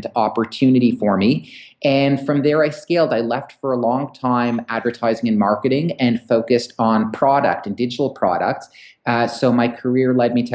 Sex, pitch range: male, 110-125 Hz